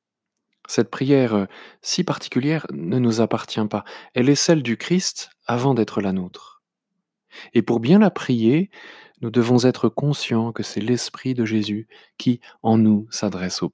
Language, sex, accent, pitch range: French, male, French, 110-145 Hz